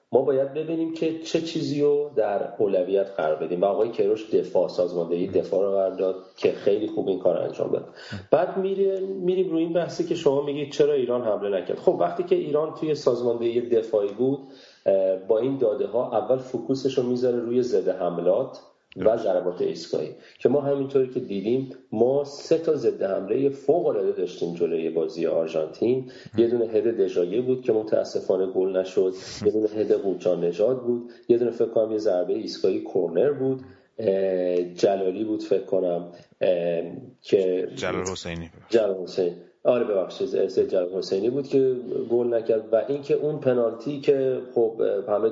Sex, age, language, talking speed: male, 40-59, Persian, 165 wpm